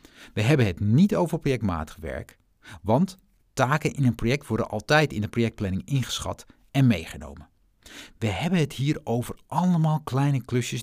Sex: male